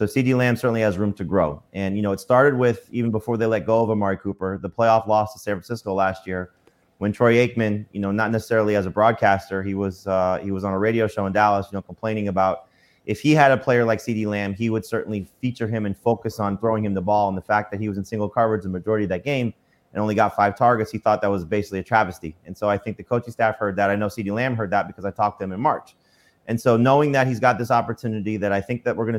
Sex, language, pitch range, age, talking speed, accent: male, English, 100-115 Hz, 30-49, 280 wpm, American